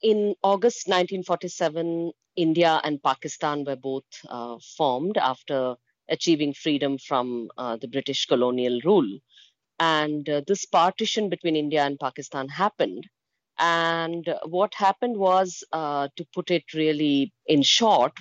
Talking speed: 130 wpm